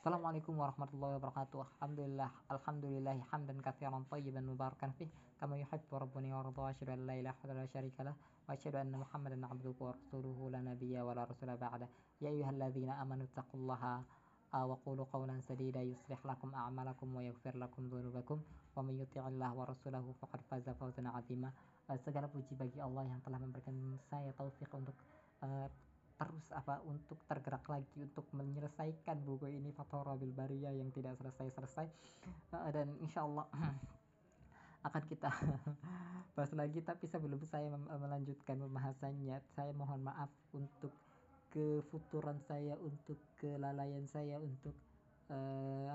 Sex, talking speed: female, 70 wpm